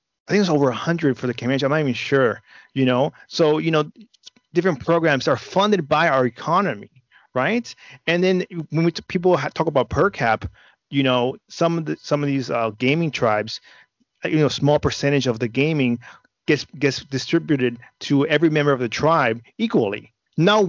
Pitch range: 130-170 Hz